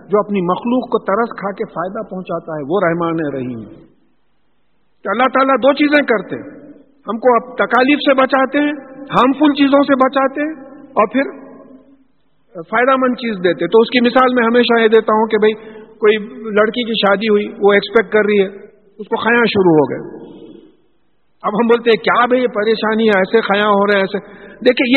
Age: 50-69